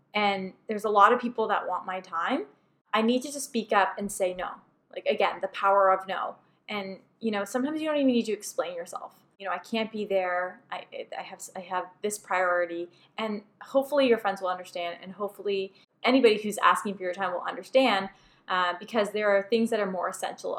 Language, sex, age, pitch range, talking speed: English, female, 10-29, 185-235 Hz, 215 wpm